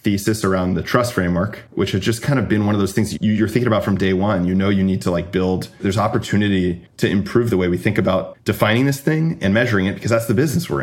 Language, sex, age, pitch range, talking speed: English, male, 30-49, 95-120 Hz, 270 wpm